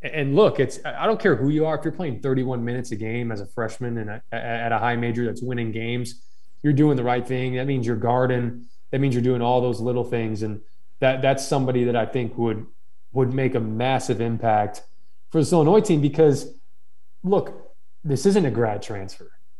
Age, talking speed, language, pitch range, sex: 20-39, 205 wpm, English, 120-140 Hz, male